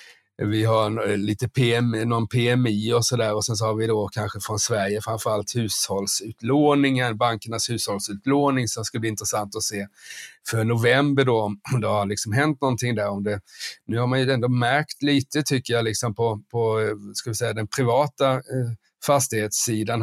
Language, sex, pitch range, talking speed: Swedish, male, 105-125 Hz, 170 wpm